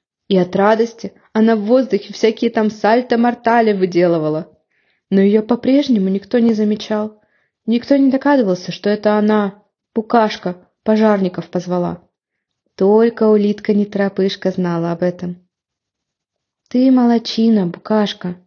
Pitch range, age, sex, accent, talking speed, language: 185-235 Hz, 20-39, female, native, 110 wpm, Ukrainian